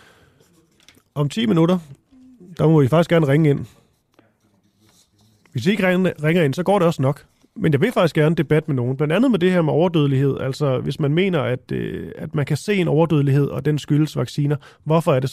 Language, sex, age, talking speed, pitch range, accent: Danish, male, 30-49, 210 wpm, 135-170 Hz, native